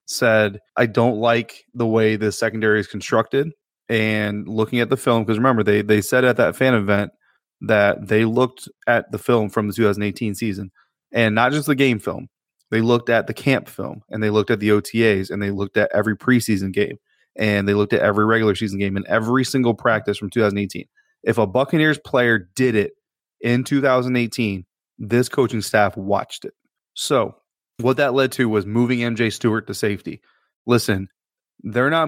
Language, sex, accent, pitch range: English, male, American, 105-120 Hz